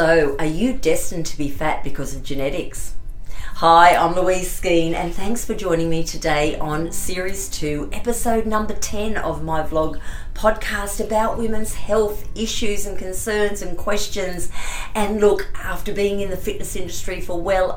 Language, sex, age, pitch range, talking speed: English, female, 40-59, 160-205 Hz, 160 wpm